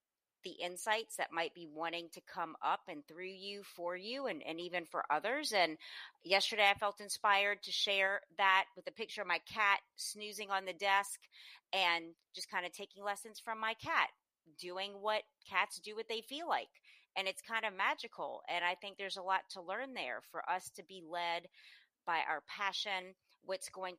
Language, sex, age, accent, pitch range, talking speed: English, female, 30-49, American, 170-200 Hz, 195 wpm